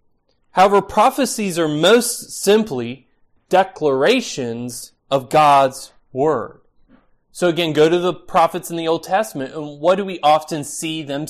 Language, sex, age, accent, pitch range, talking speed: English, male, 30-49, American, 135-180 Hz, 140 wpm